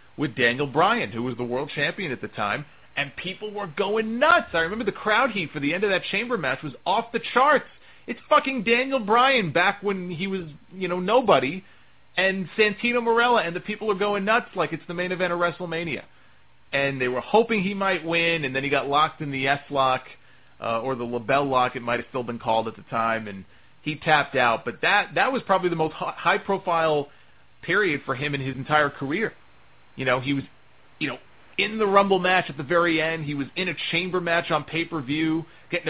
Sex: male